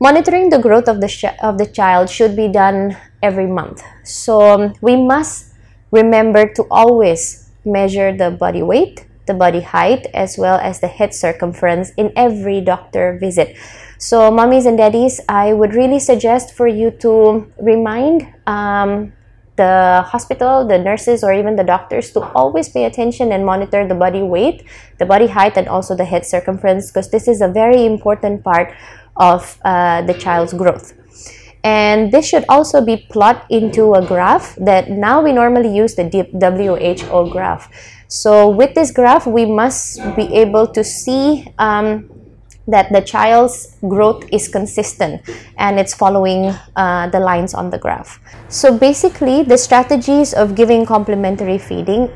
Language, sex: Indonesian, female